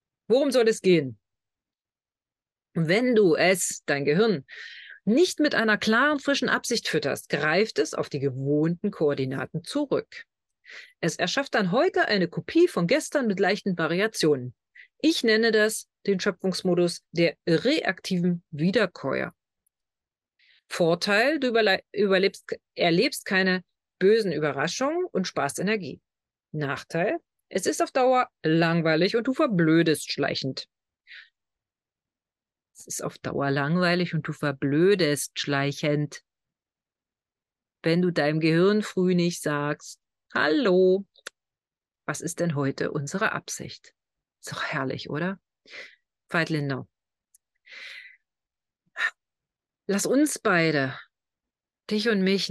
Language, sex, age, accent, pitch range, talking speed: German, female, 40-59, German, 150-225 Hz, 110 wpm